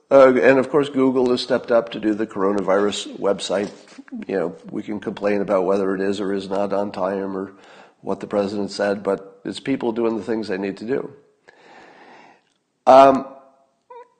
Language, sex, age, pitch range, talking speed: English, male, 50-69, 105-150 Hz, 180 wpm